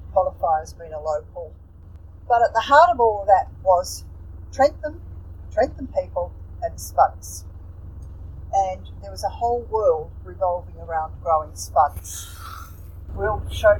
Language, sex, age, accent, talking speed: English, female, 50-69, Australian, 135 wpm